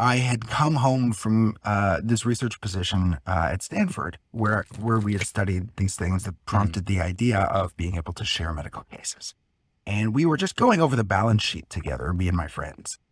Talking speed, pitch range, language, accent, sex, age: 200 wpm, 95-120 Hz, English, American, male, 30-49